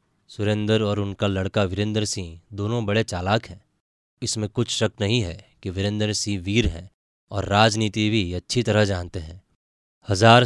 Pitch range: 95-115 Hz